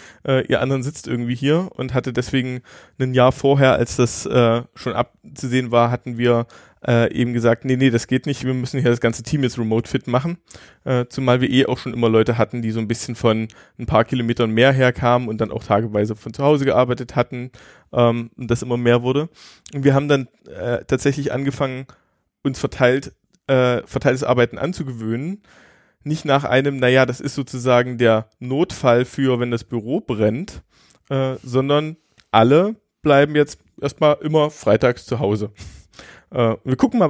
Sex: male